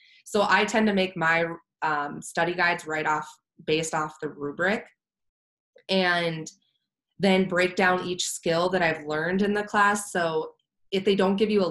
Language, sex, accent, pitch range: English, female, American, 160-195 Hz